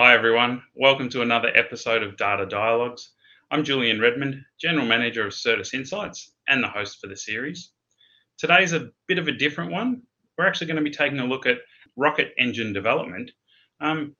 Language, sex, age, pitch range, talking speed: English, male, 30-49, 105-150 Hz, 180 wpm